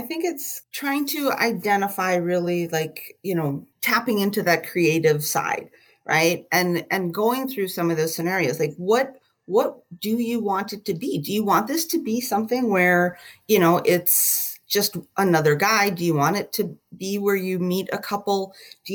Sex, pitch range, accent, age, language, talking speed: female, 160-205 Hz, American, 30-49, English, 185 wpm